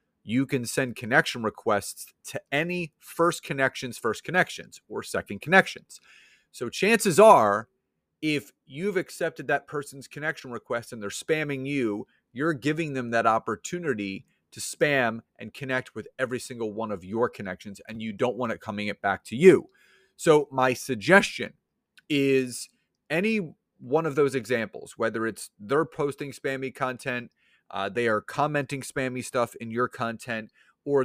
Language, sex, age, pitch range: English, male, 30-49, 110-145 Hz